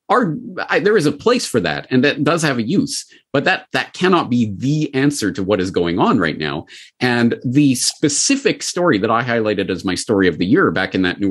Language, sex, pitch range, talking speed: English, male, 110-150 Hz, 240 wpm